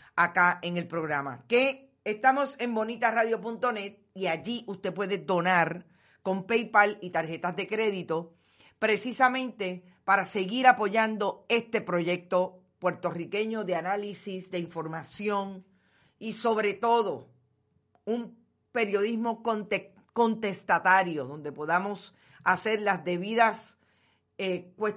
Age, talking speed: 50-69, 100 wpm